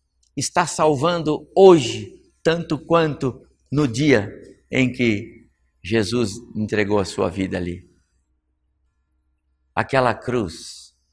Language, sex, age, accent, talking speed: Portuguese, male, 60-79, Brazilian, 90 wpm